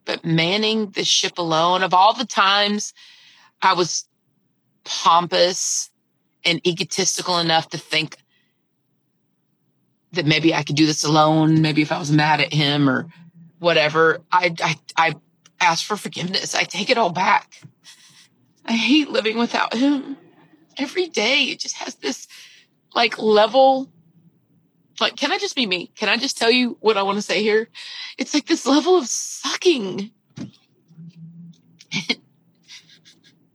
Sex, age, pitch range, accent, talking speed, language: female, 30-49, 165-230 Hz, American, 145 wpm, English